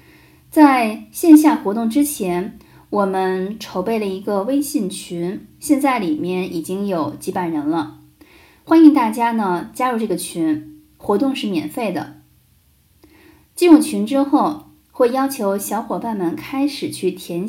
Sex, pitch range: female, 185-280 Hz